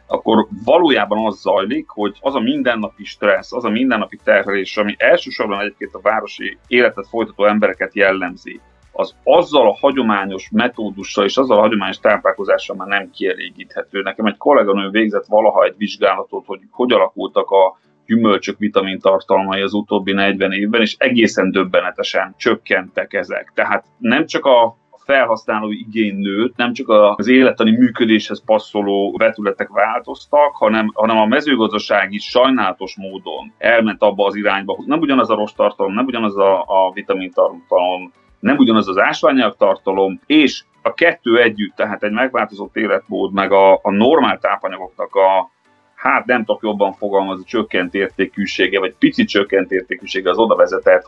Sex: male